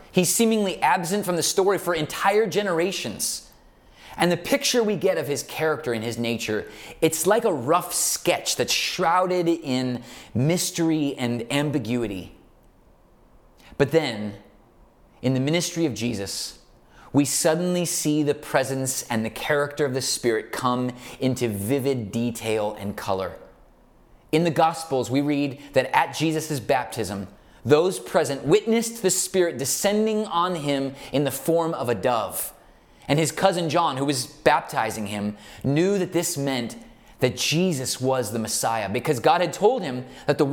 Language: English